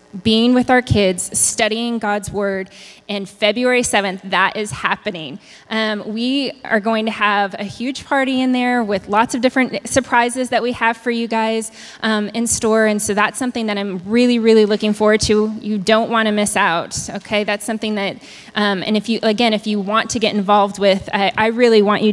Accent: American